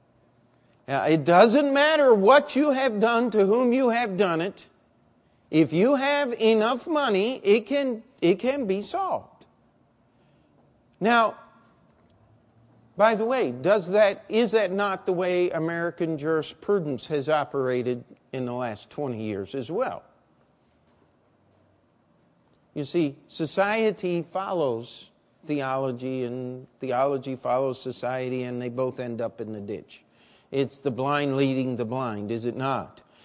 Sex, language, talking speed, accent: male, English, 130 wpm, American